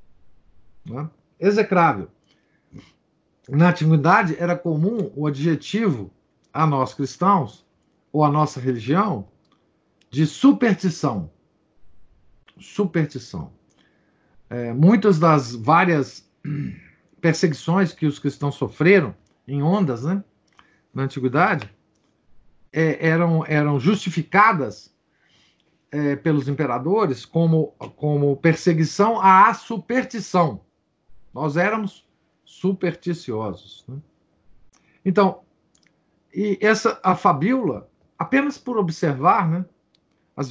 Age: 50-69